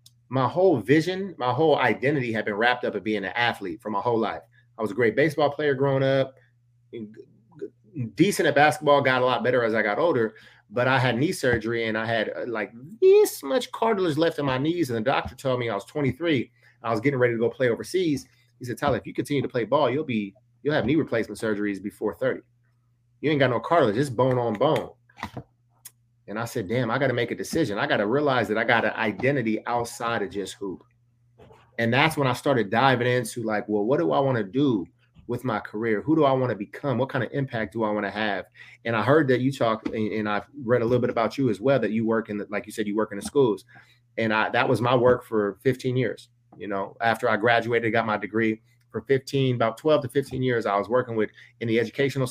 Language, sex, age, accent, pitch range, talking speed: English, male, 30-49, American, 110-135 Hz, 240 wpm